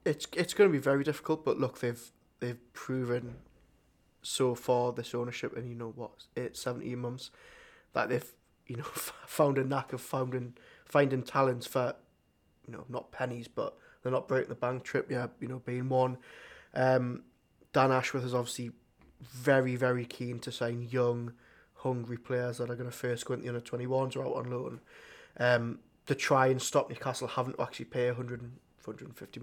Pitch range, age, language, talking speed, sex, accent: 120-130 Hz, 20-39, English, 195 wpm, male, British